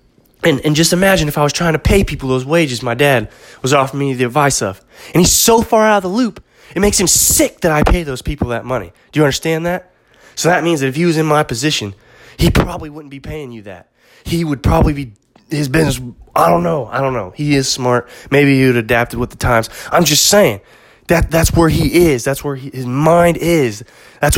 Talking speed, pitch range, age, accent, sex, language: 240 wpm, 125-170 Hz, 20-39, American, male, English